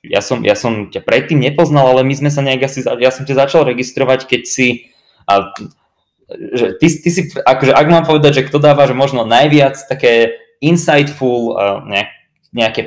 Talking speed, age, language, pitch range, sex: 175 wpm, 20-39, Slovak, 110-140 Hz, male